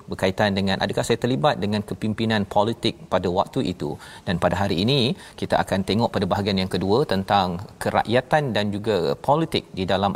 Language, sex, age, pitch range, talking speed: Malayalam, male, 40-59, 95-120 Hz, 170 wpm